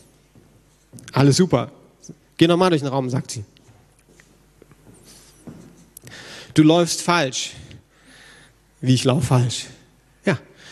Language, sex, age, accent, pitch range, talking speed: German, male, 40-59, German, 130-180 Hz, 95 wpm